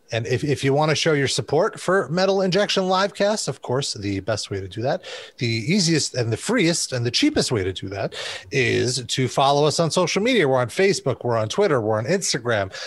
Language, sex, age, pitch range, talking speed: English, male, 30-49, 115-160 Hz, 230 wpm